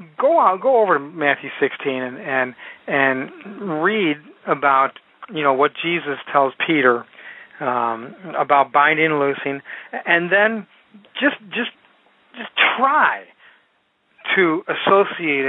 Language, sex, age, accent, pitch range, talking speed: English, male, 40-59, American, 140-180 Hz, 120 wpm